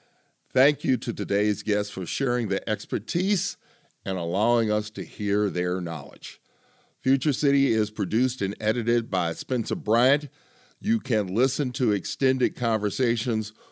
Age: 50-69